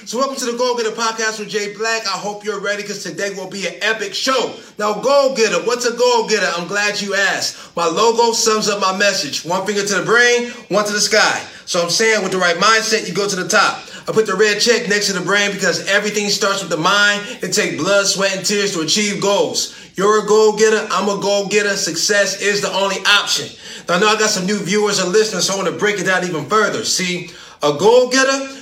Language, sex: English, male